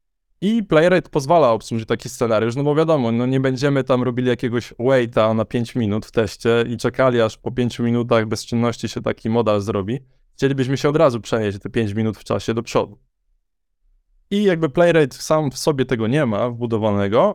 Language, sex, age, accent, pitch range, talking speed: Polish, male, 20-39, native, 110-150 Hz, 185 wpm